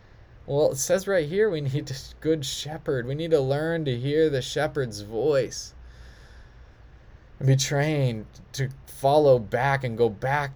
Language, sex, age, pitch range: English, male, 20-39, 110-140 Hz